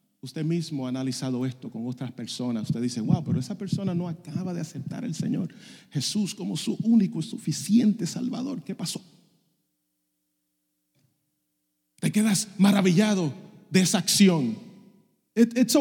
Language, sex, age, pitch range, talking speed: English, male, 30-49, 120-200 Hz, 135 wpm